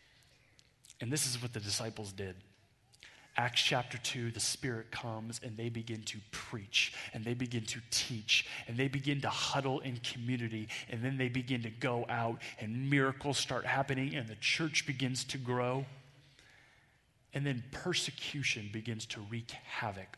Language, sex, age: English, male, 30-49